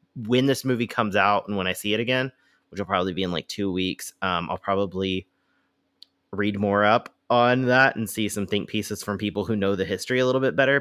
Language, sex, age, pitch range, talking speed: English, male, 30-49, 95-120 Hz, 235 wpm